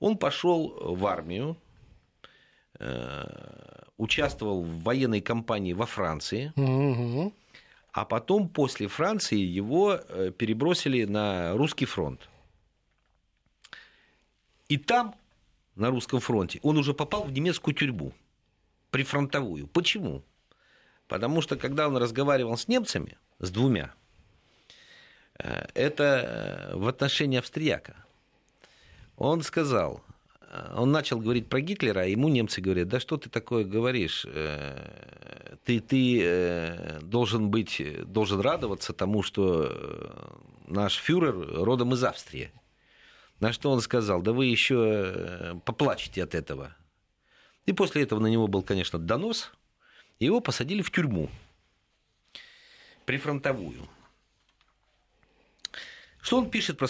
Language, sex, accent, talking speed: Russian, male, native, 105 wpm